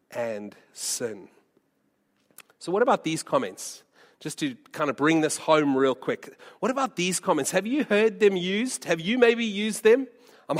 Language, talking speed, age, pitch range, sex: English, 175 wpm, 40-59, 155-230 Hz, male